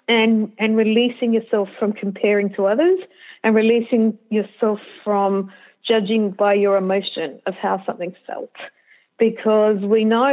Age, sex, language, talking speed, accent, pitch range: 40-59, female, English, 135 wpm, Australian, 205-250 Hz